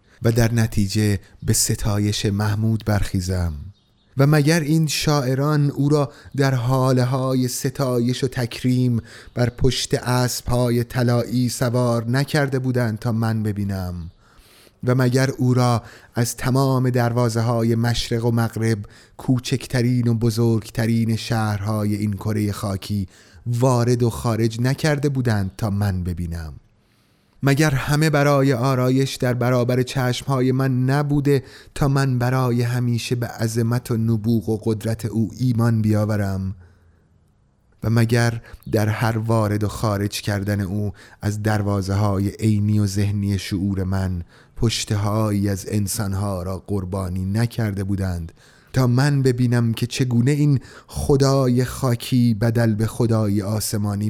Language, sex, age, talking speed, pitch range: Persian, male, 30-49, 125 wpm, 105-125 Hz